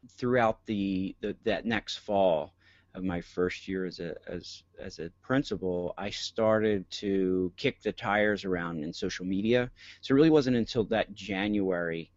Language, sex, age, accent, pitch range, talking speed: English, male, 40-59, American, 90-110 Hz, 165 wpm